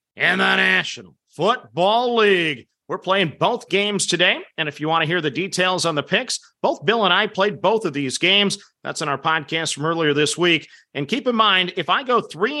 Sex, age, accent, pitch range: male, 40-59, American, 160-205 Hz